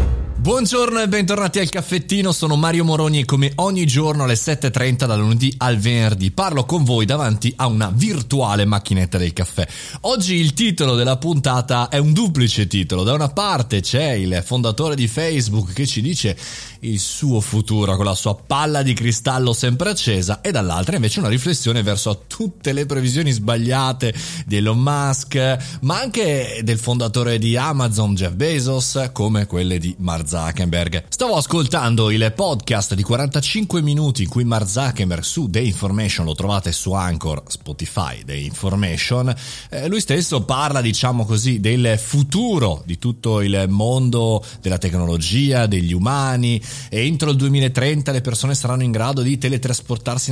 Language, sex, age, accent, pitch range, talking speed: Italian, male, 30-49, native, 105-140 Hz, 155 wpm